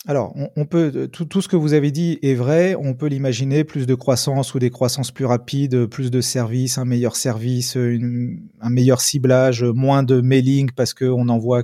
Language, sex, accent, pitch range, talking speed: French, male, French, 120-150 Hz, 205 wpm